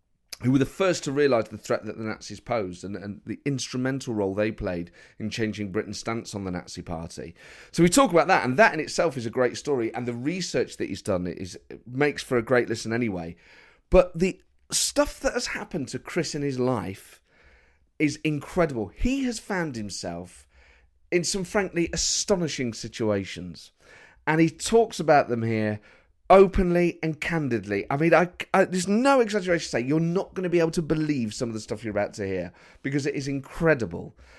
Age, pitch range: 40-59, 105-165 Hz